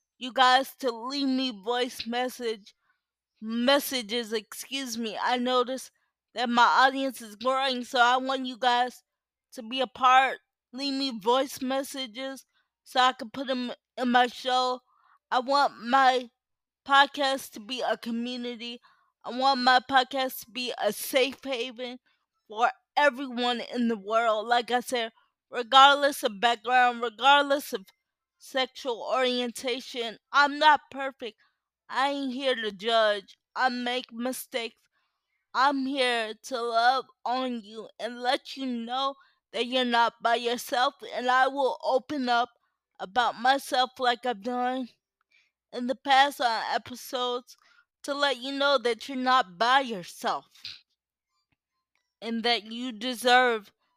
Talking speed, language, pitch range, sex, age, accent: 140 wpm, English, 240-265 Hz, female, 20-39, American